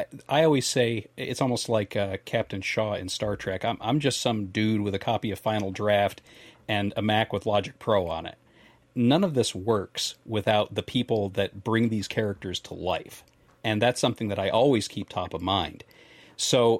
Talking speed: 195 wpm